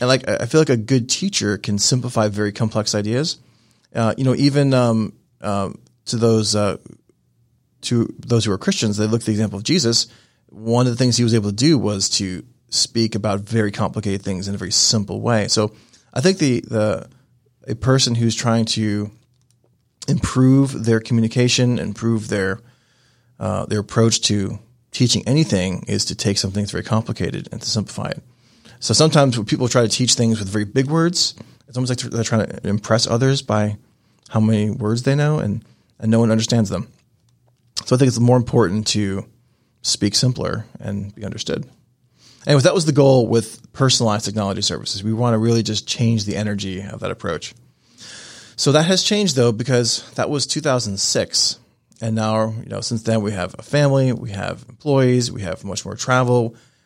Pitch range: 105-125 Hz